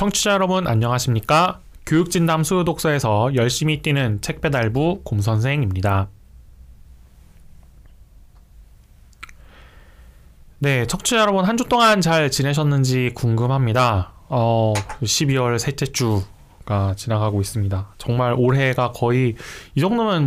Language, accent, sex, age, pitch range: Korean, native, male, 20-39, 105-160 Hz